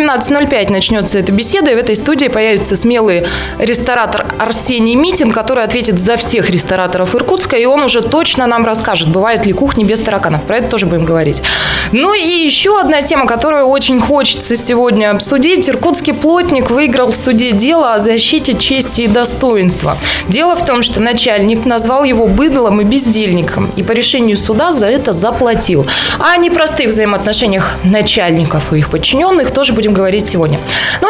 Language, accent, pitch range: Russian, native, 205-270 Hz